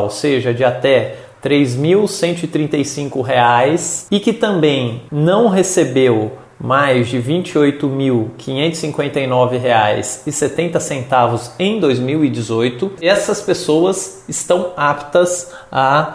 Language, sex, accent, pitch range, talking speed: Portuguese, male, Brazilian, 130-165 Hz, 80 wpm